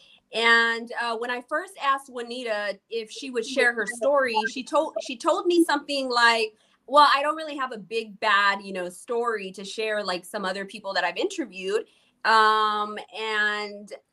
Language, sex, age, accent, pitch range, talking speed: English, female, 20-39, American, 210-255 Hz, 180 wpm